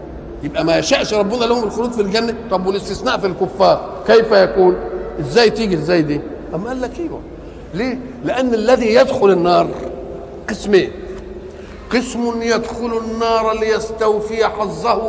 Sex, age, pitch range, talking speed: male, 50-69, 200-240 Hz, 130 wpm